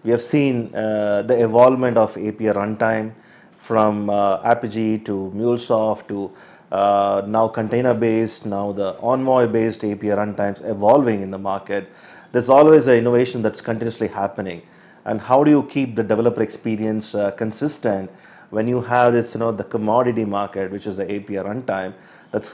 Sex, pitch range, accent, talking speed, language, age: male, 105-120 Hz, Indian, 160 wpm, English, 30-49